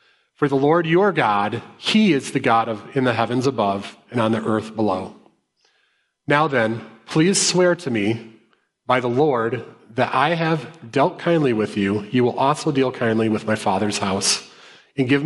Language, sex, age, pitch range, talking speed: English, male, 30-49, 110-145 Hz, 180 wpm